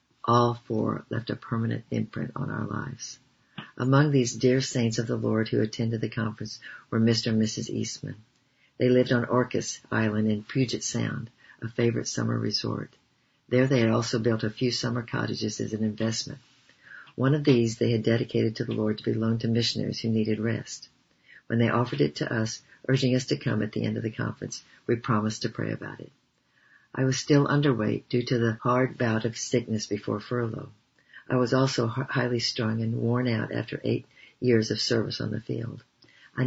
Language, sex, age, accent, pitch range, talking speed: English, female, 60-79, American, 110-125 Hz, 195 wpm